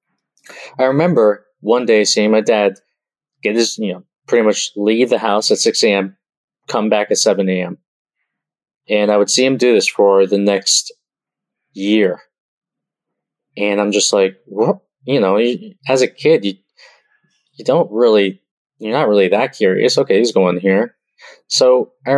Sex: male